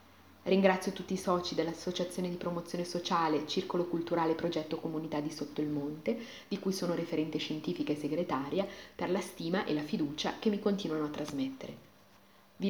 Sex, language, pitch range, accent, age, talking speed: female, Italian, 160-225 Hz, native, 30-49, 165 wpm